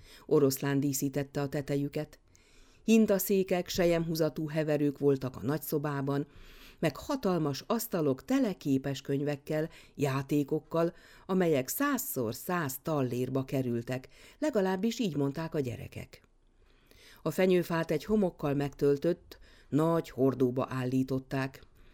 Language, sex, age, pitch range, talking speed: Hungarian, female, 50-69, 135-175 Hz, 95 wpm